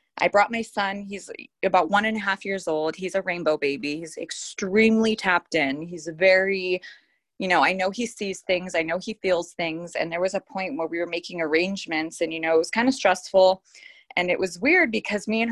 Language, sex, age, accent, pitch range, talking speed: English, female, 20-39, American, 175-215 Hz, 230 wpm